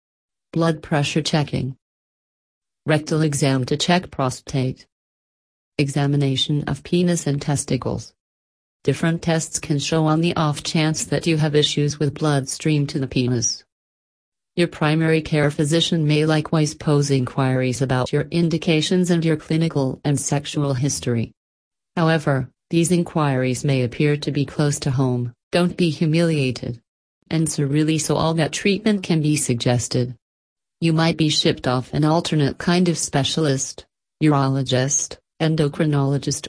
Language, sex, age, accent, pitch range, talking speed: English, female, 40-59, American, 130-160 Hz, 135 wpm